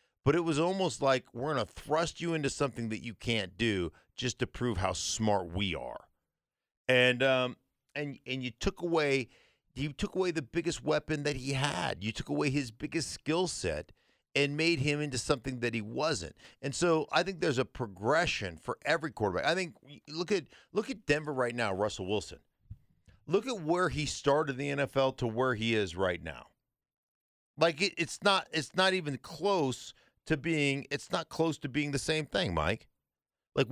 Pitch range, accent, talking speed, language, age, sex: 130-165 Hz, American, 195 wpm, English, 50-69, male